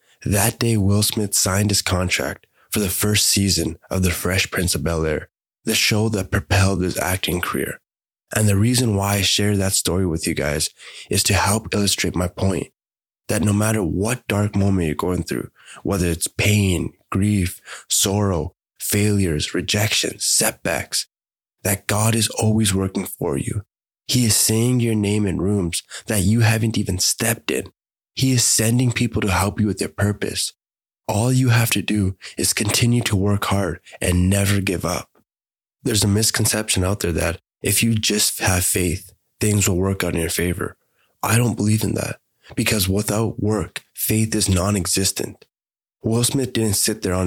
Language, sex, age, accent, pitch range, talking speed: English, male, 20-39, American, 95-110 Hz, 175 wpm